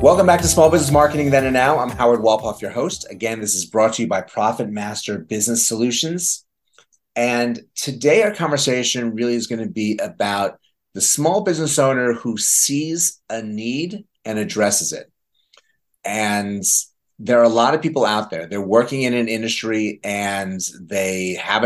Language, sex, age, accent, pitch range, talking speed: English, male, 30-49, American, 105-125 Hz, 175 wpm